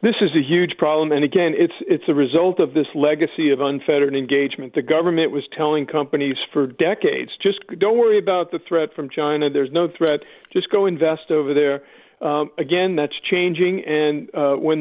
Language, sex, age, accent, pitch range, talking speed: English, male, 50-69, American, 145-185 Hz, 190 wpm